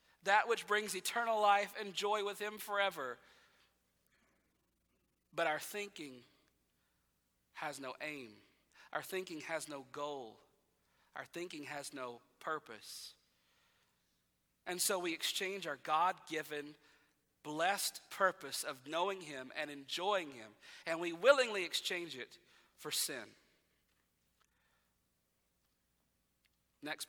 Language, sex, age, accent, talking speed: English, male, 40-59, American, 105 wpm